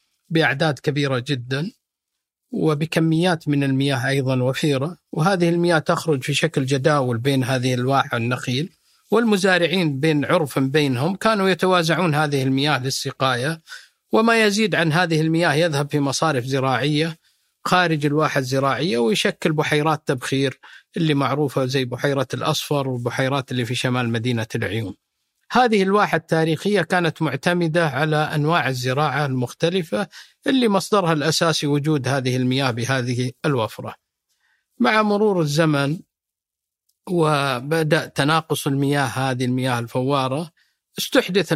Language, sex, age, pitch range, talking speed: Arabic, male, 50-69, 135-170 Hz, 115 wpm